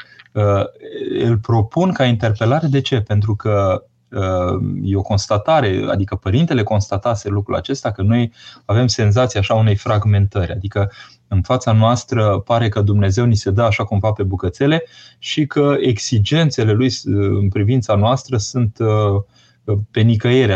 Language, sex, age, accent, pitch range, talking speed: Romanian, male, 20-39, native, 100-130 Hz, 145 wpm